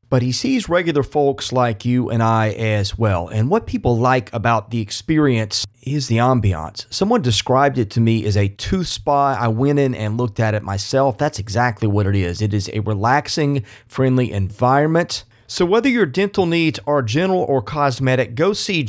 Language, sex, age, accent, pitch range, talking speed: English, male, 30-49, American, 115-145 Hz, 190 wpm